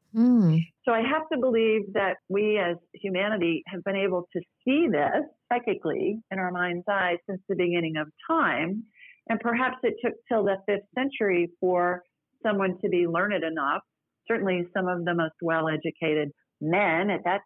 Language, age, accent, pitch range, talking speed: English, 50-69, American, 160-205 Hz, 165 wpm